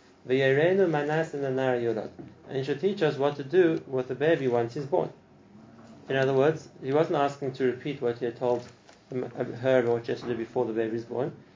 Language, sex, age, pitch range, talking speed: English, male, 30-49, 120-145 Hz, 175 wpm